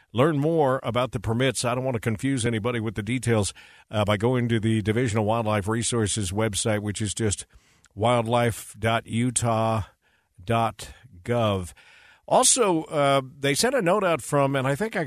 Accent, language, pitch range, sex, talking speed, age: American, English, 115-140 Hz, male, 160 wpm, 50-69